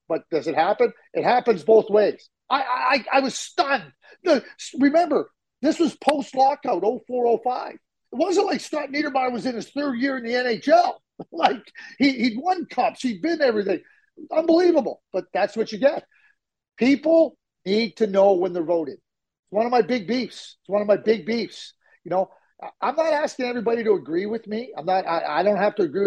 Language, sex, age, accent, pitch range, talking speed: English, male, 40-59, American, 185-260 Hz, 190 wpm